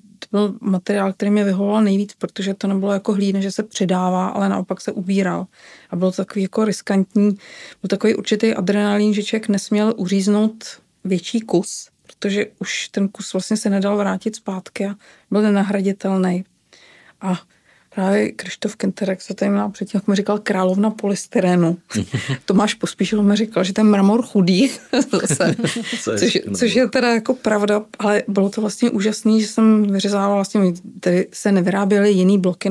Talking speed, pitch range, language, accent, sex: 155 wpm, 190-210 Hz, Czech, native, female